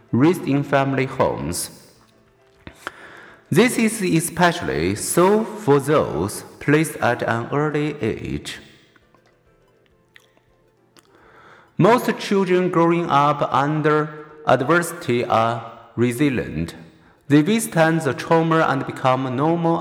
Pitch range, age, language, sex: 140-175 Hz, 50-69, Chinese, male